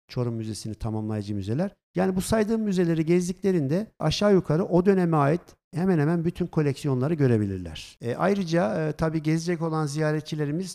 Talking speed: 145 wpm